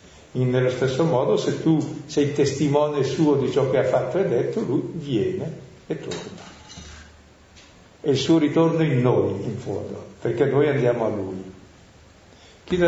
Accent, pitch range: native, 100-140 Hz